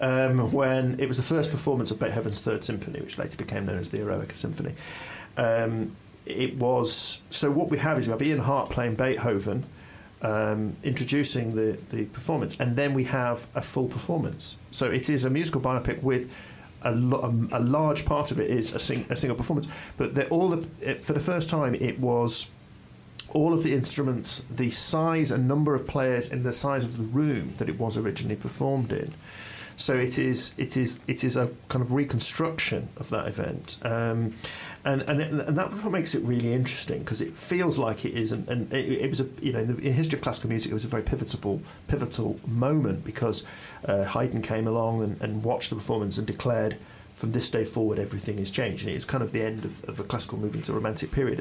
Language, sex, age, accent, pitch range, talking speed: English, male, 40-59, British, 115-140 Hz, 210 wpm